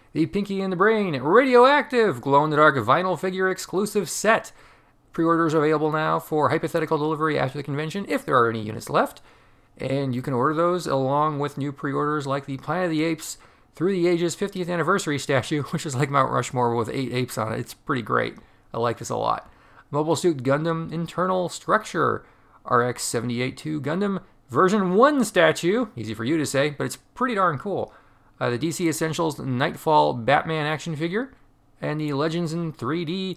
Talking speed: 180 wpm